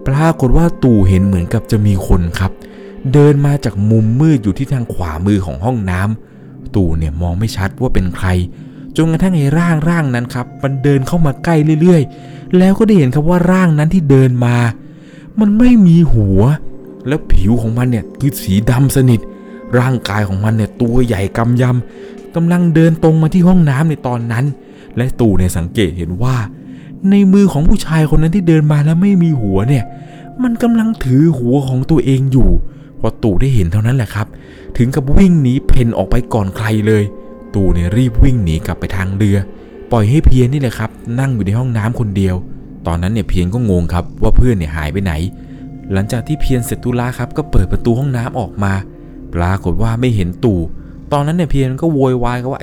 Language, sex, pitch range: Thai, male, 105-155 Hz